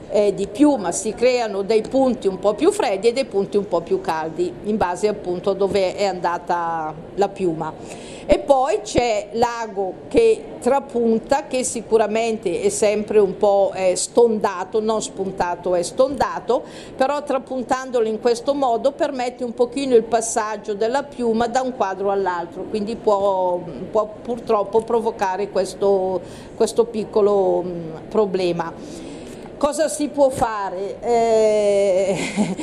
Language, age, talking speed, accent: Italian, 50-69, 135 wpm, native